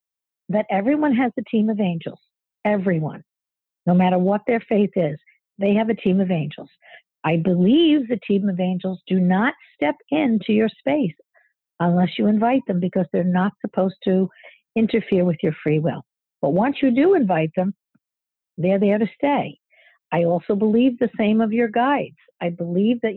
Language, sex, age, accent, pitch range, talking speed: English, female, 60-79, American, 175-225 Hz, 175 wpm